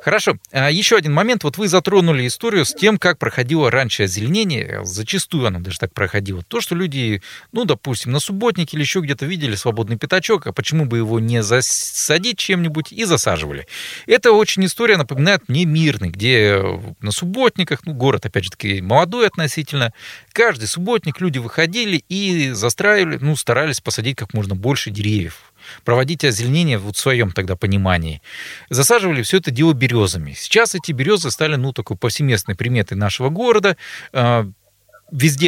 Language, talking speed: Russian, 155 wpm